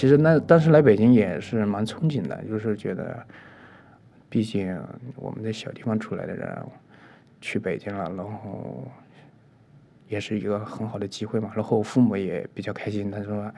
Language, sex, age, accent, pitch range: Chinese, male, 20-39, native, 110-135 Hz